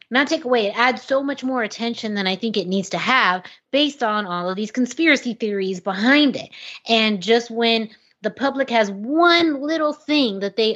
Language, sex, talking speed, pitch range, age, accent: English, female, 200 wpm, 190-235 Hz, 30-49, American